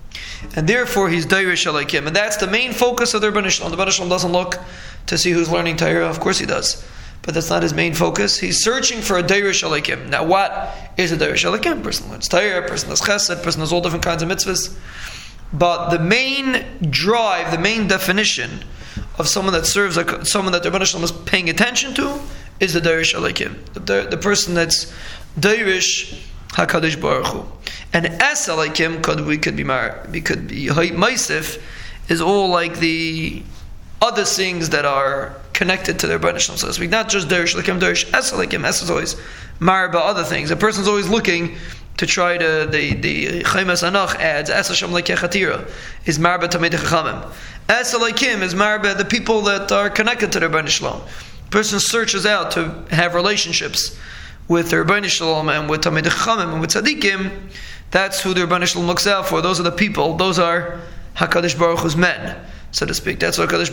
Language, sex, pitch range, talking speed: English, male, 170-205 Hz, 195 wpm